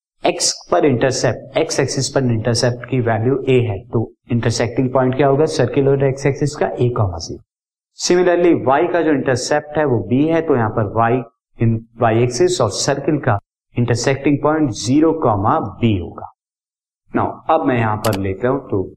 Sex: male